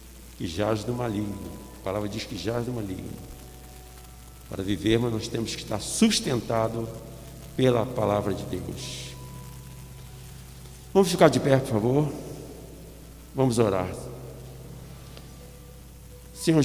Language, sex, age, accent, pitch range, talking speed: Portuguese, male, 60-79, Brazilian, 105-150 Hz, 120 wpm